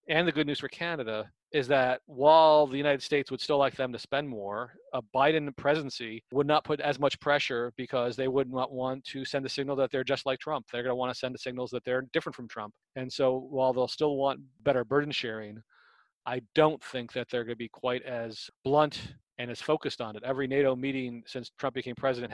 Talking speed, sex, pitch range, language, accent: 235 wpm, male, 120-140 Hz, English, American